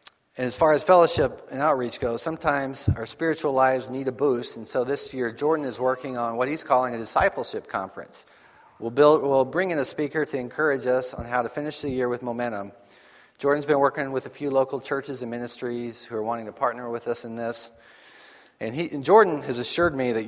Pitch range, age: 115-140 Hz, 40-59